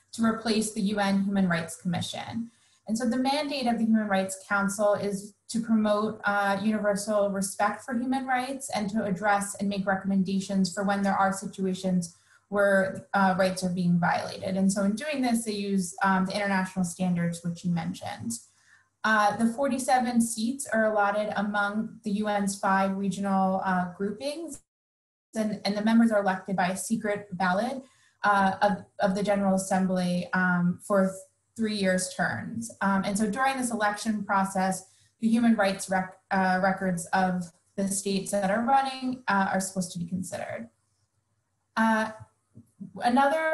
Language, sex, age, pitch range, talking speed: English, female, 20-39, 190-220 Hz, 160 wpm